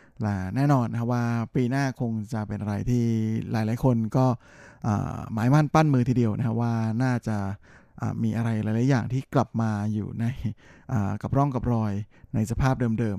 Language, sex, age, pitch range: Thai, male, 20-39, 105-125 Hz